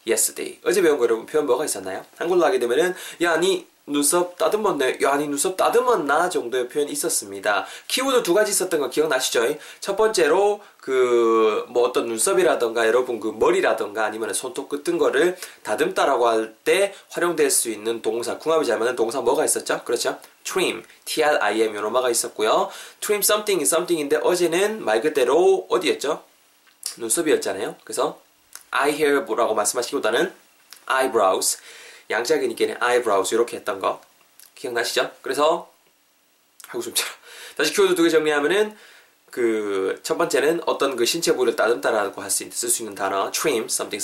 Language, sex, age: Korean, male, 20-39